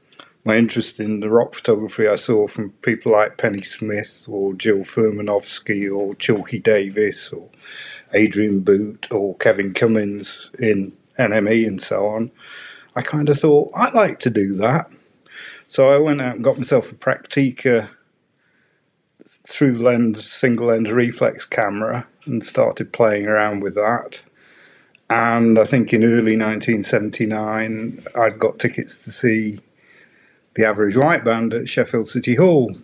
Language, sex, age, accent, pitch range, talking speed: English, male, 40-59, British, 105-120 Hz, 145 wpm